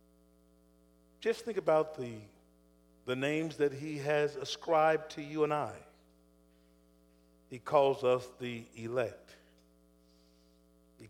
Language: English